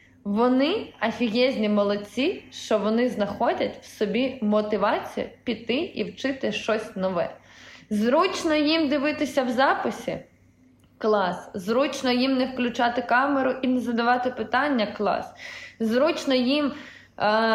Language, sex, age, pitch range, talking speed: Ukrainian, female, 20-39, 205-255 Hz, 115 wpm